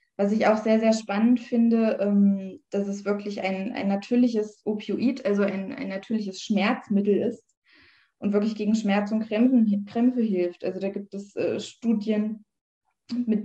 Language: German